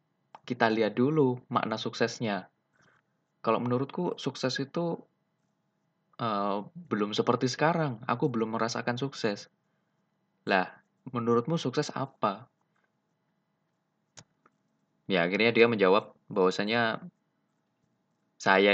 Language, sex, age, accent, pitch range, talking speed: Indonesian, male, 20-39, native, 100-135 Hz, 85 wpm